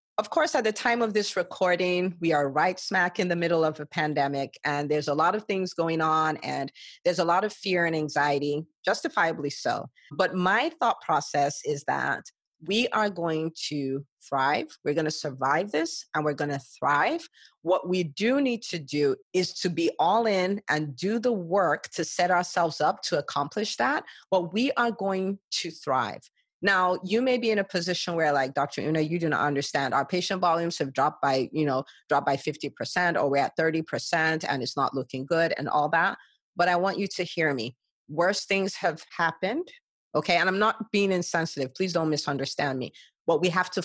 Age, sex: 40-59, female